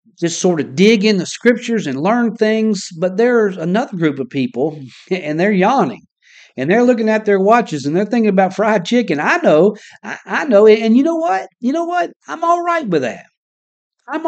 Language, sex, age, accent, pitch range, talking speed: English, male, 50-69, American, 145-215 Hz, 200 wpm